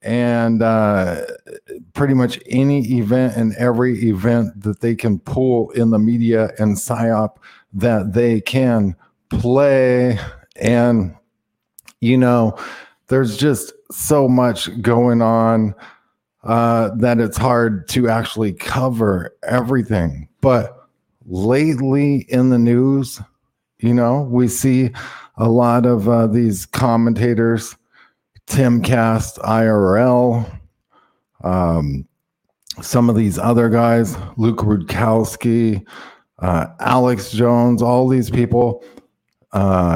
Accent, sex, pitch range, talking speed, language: American, male, 110-125 Hz, 110 wpm, English